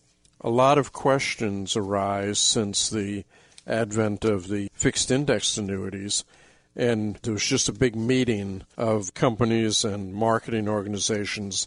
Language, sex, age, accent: English, male, 50-69, American